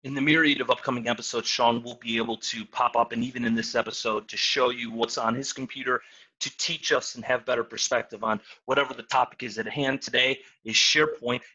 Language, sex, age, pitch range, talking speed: English, male, 30-49, 115-150 Hz, 220 wpm